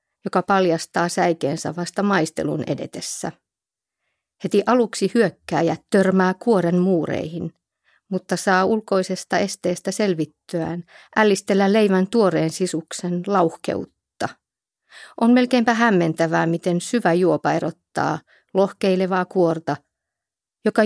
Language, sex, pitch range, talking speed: Finnish, female, 170-215 Hz, 90 wpm